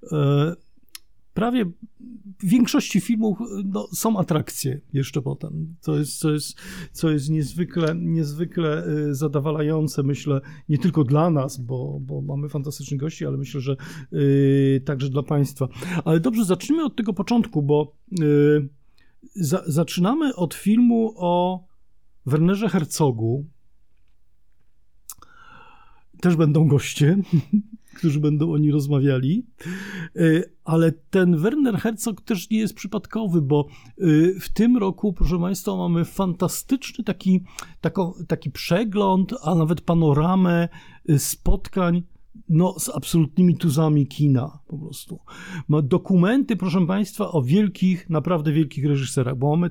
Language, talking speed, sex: Polish, 120 wpm, male